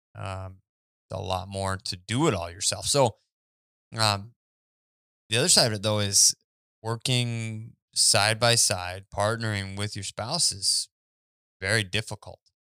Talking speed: 135 wpm